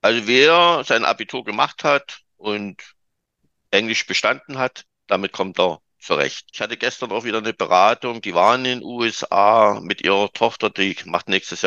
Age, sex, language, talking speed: 50-69, male, German, 170 wpm